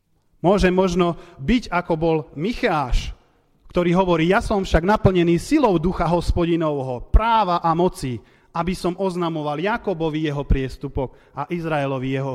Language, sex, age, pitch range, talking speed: Slovak, male, 30-49, 130-195 Hz, 130 wpm